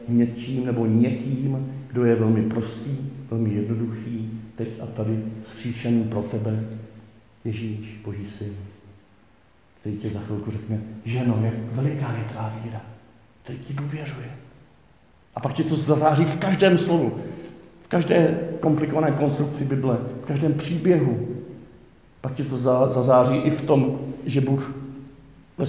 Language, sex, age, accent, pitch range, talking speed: Czech, male, 50-69, native, 110-140 Hz, 135 wpm